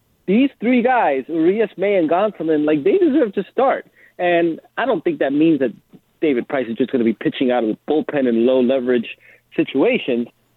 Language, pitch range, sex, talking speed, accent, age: English, 140-185 Hz, male, 200 wpm, American, 30-49